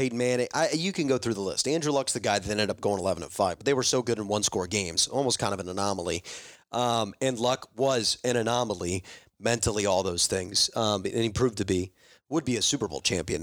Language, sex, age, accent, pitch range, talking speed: English, male, 30-49, American, 110-140 Hz, 235 wpm